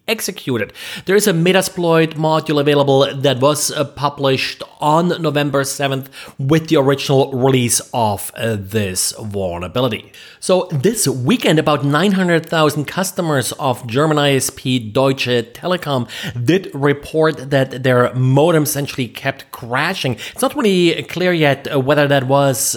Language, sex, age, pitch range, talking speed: English, male, 30-49, 130-160 Hz, 130 wpm